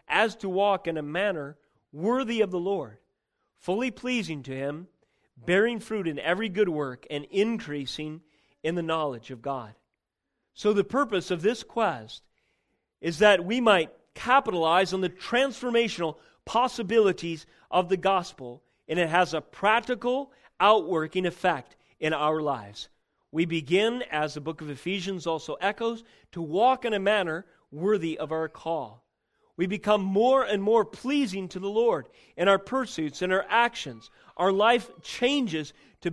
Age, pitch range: 40-59, 155-225 Hz